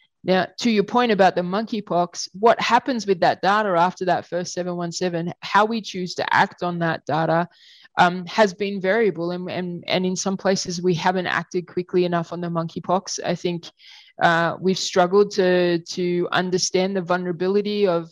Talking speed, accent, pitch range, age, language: 170 wpm, Australian, 175-190 Hz, 20-39, English